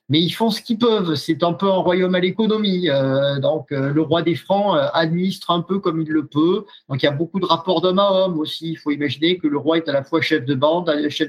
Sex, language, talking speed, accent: male, French, 275 wpm, French